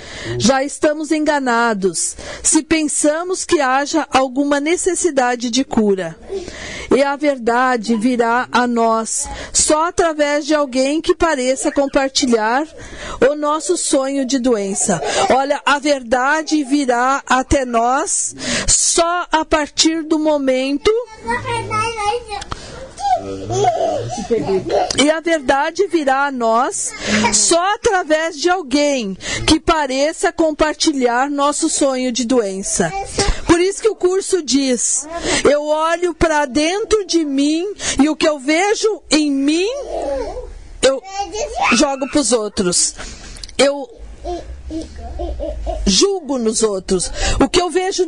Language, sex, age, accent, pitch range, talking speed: Portuguese, female, 50-69, Brazilian, 260-340 Hz, 110 wpm